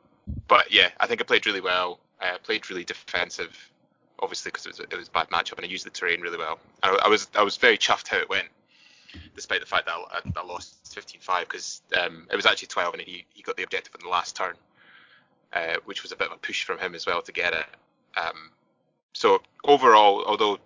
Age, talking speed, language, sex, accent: 20-39, 240 wpm, English, male, British